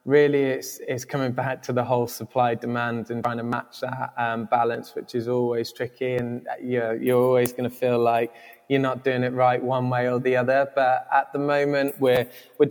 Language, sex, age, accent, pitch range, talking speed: English, male, 20-39, British, 120-130 Hz, 210 wpm